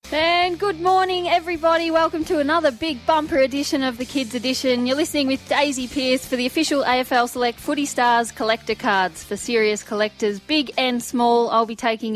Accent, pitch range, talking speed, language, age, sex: Australian, 210-265 Hz, 185 wpm, English, 20-39, female